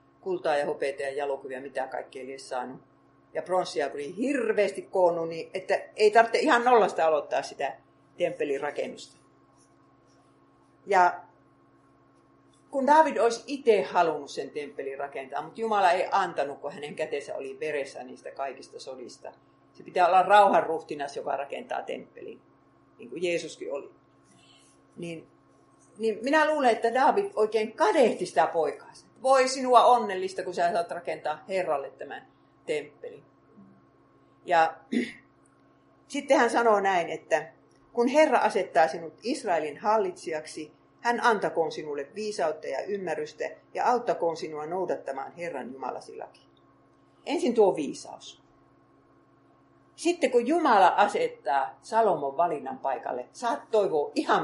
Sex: female